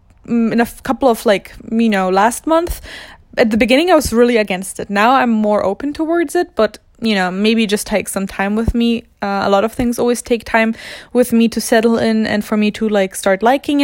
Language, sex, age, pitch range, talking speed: English, female, 20-39, 205-245 Hz, 230 wpm